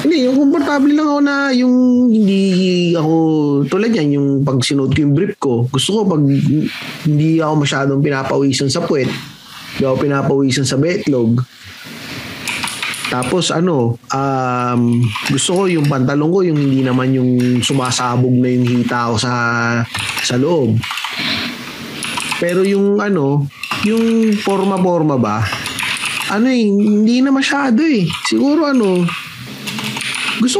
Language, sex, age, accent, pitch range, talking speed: Filipino, male, 20-39, native, 130-200 Hz, 130 wpm